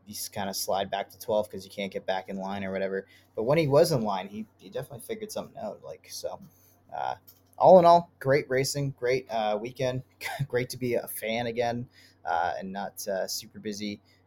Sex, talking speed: male, 215 wpm